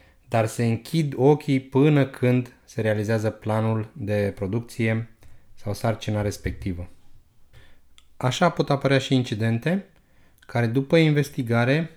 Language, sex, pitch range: Romanian, male, 105-135 Hz